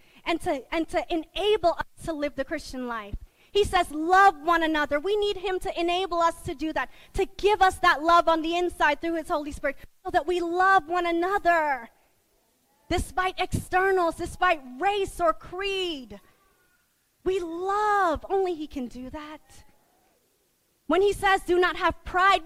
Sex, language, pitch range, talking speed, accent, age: female, English, 270-360 Hz, 165 wpm, American, 30-49